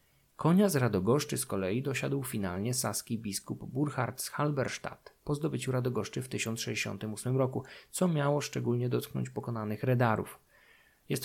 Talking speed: 135 wpm